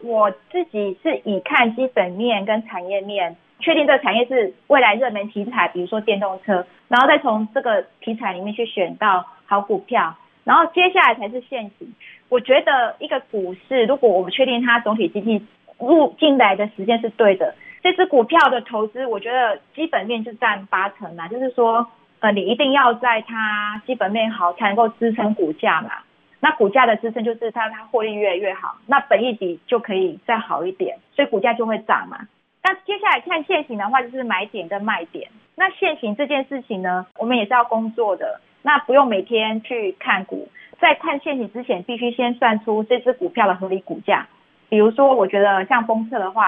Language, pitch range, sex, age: Chinese, 205-265 Hz, female, 20-39